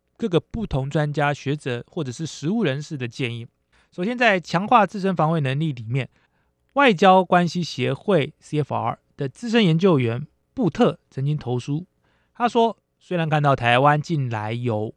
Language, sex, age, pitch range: Chinese, male, 20-39, 125-165 Hz